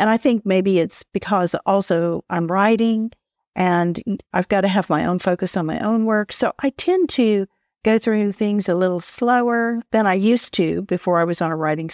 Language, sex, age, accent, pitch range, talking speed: English, female, 50-69, American, 180-220 Hz, 205 wpm